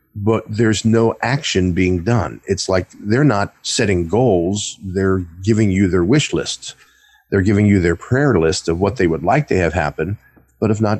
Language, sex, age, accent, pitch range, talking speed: English, male, 50-69, American, 90-120 Hz, 190 wpm